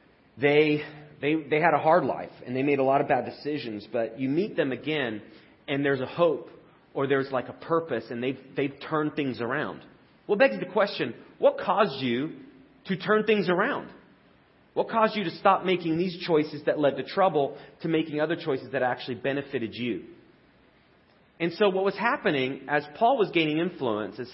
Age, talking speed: 30-49, 190 wpm